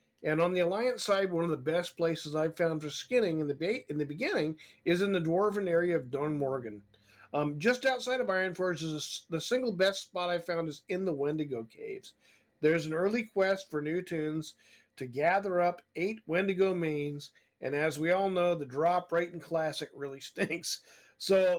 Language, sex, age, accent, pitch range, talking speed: English, male, 50-69, American, 155-195 Hz, 205 wpm